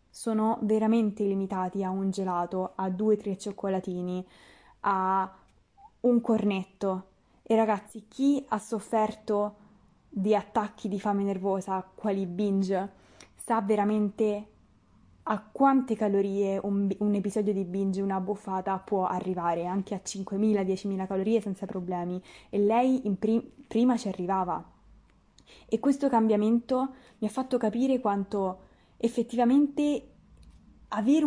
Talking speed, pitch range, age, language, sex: 125 wpm, 195-235 Hz, 20-39, Italian, female